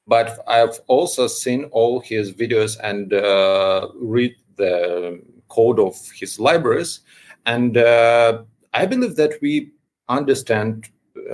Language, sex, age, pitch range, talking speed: English, male, 40-59, 110-140 Hz, 120 wpm